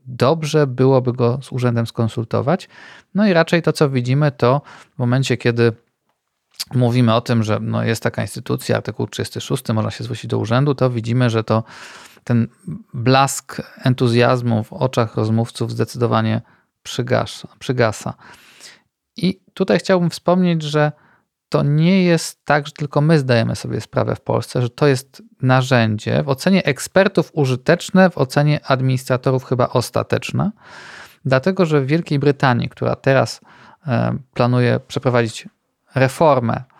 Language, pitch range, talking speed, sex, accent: Polish, 115-150 Hz, 135 wpm, male, native